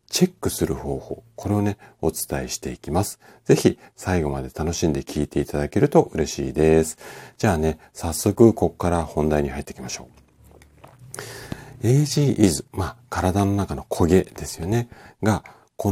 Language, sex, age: Japanese, male, 40-59